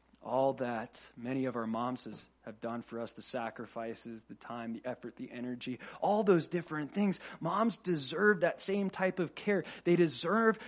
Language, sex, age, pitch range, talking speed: English, male, 20-39, 155-215 Hz, 175 wpm